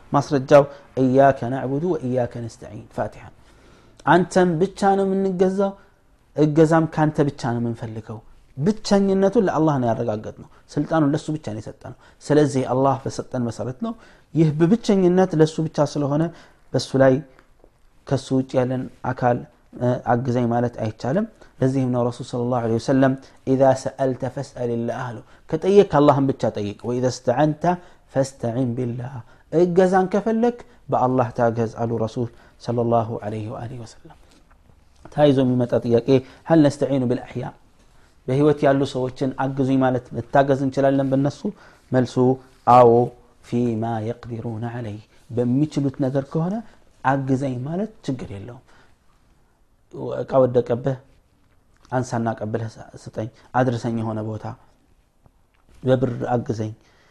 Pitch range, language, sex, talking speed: 120-145 Hz, Amharic, male, 125 wpm